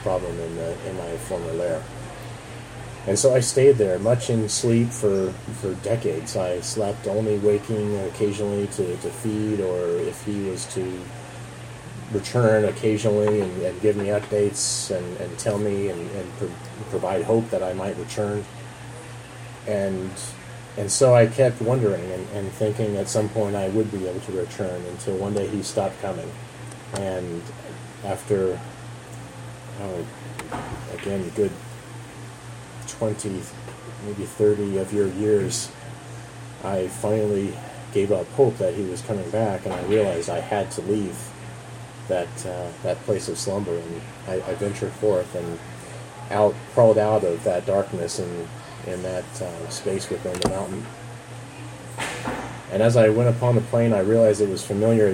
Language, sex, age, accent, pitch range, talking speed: English, male, 30-49, American, 100-120 Hz, 155 wpm